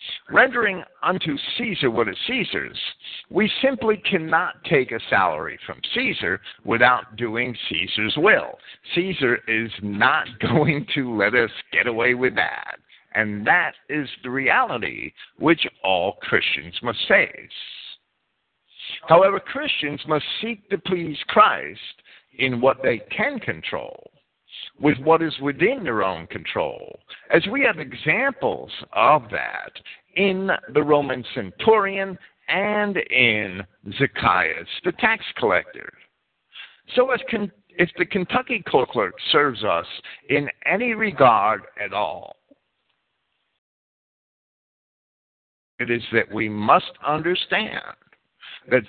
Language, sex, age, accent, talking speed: English, male, 50-69, American, 115 wpm